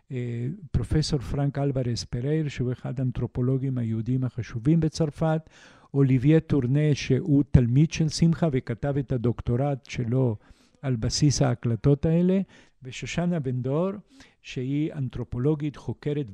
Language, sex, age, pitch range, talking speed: Hebrew, male, 50-69, 125-155 Hz, 110 wpm